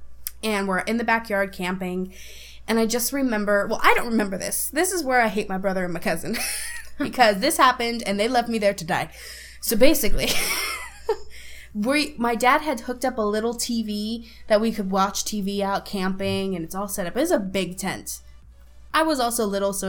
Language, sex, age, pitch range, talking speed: English, female, 20-39, 190-235 Hz, 200 wpm